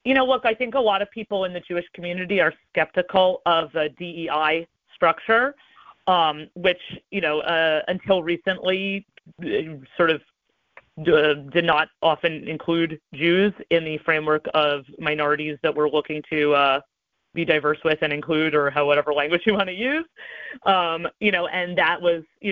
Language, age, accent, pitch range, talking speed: English, 30-49, American, 155-190 Hz, 170 wpm